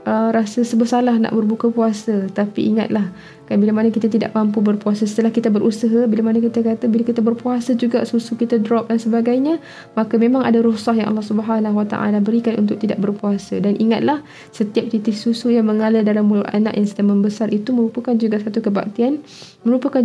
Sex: female